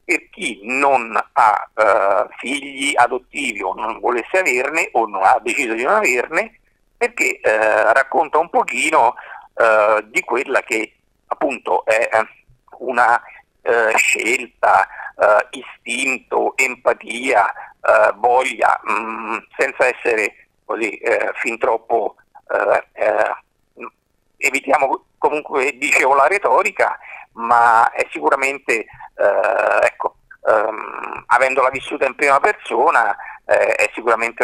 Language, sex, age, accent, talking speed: Italian, male, 50-69, native, 110 wpm